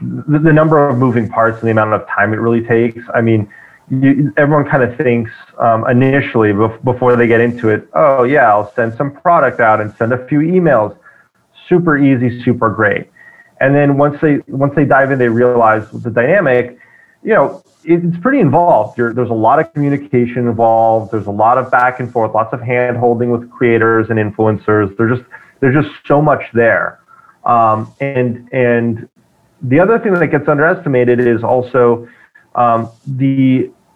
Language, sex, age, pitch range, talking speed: English, male, 30-49, 115-135 Hz, 185 wpm